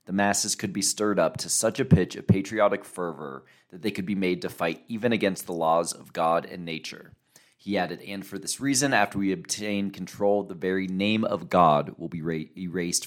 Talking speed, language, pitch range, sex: 210 wpm, English, 85-105 Hz, male